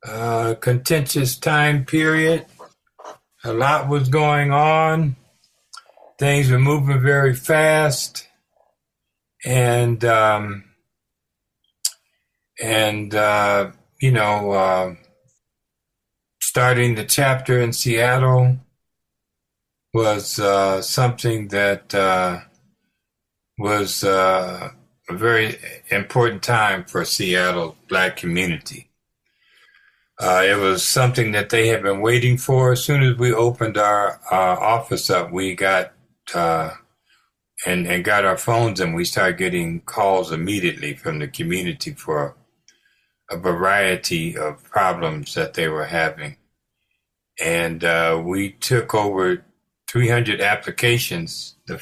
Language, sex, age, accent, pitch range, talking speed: English, male, 60-79, American, 95-130 Hz, 110 wpm